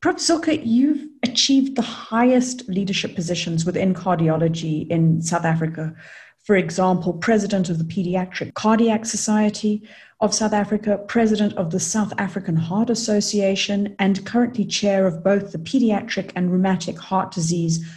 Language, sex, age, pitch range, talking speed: English, female, 40-59, 175-215 Hz, 140 wpm